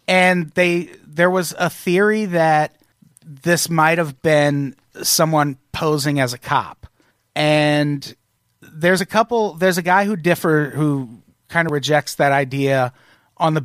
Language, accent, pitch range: English, American, 135-175 Hz